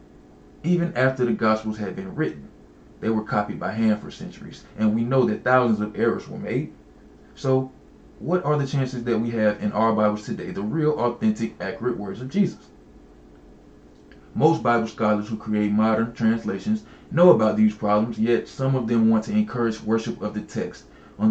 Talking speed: 185 wpm